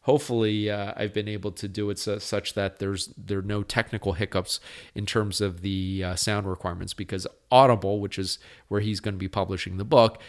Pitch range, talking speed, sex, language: 100-115 Hz, 205 wpm, male, English